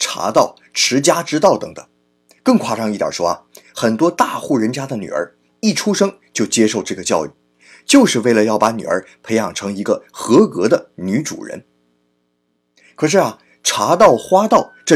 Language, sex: Chinese, male